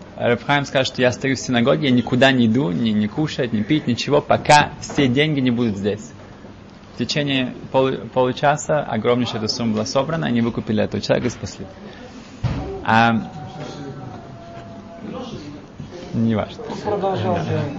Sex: male